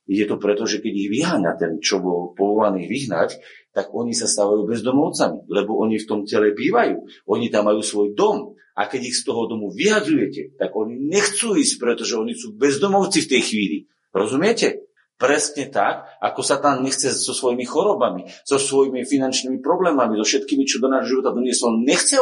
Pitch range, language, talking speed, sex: 130-200 Hz, Slovak, 185 wpm, male